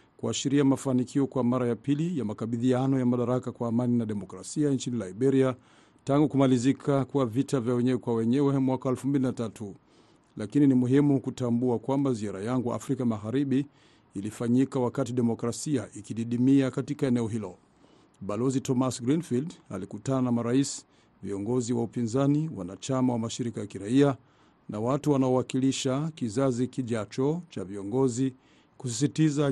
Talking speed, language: 130 wpm, Swahili